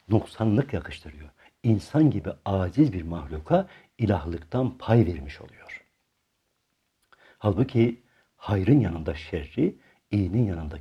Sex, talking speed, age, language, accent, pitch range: male, 95 wpm, 60-79, Turkish, native, 85-135 Hz